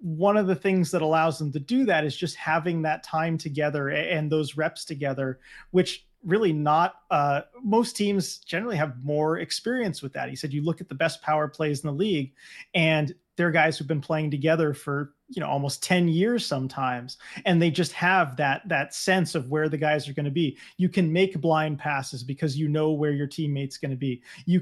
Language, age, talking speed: English, 30-49, 215 wpm